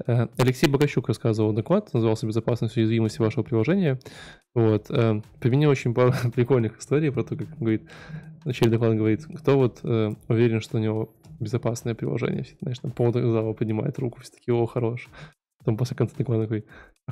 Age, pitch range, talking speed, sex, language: 20-39, 110-130 Hz, 150 wpm, male, Russian